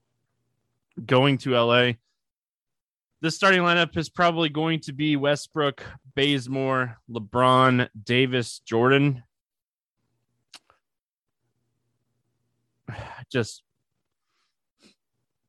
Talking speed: 65 wpm